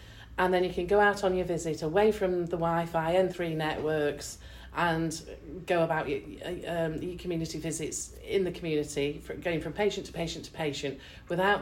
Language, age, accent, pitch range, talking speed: English, 40-59, British, 160-190 Hz, 185 wpm